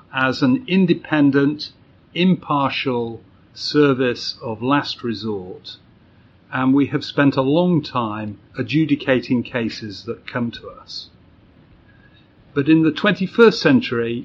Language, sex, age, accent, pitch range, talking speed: English, male, 50-69, British, 115-145 Hz, 110 wpm